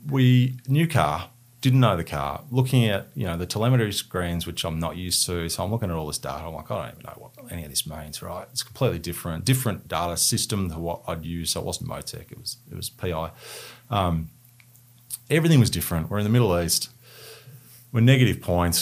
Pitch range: 85-125 Hz